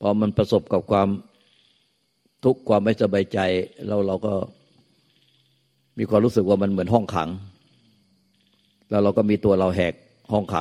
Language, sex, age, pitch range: Thai, male, 60-79, 95-110 Hz